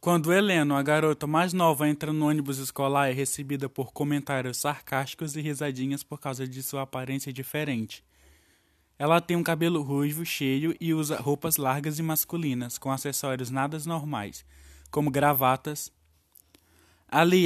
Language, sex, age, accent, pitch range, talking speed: Portuguese, male, 20-39, Brazilian, 130-165 Hz, 150 wpm